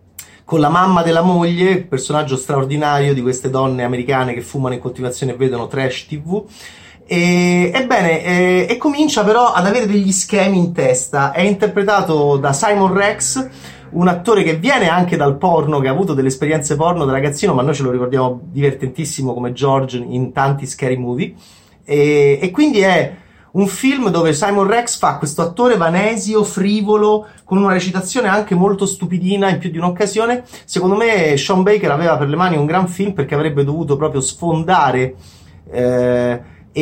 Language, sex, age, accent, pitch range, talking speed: Italian, male, 30-49, native, 135-190 Hz, 170 wpm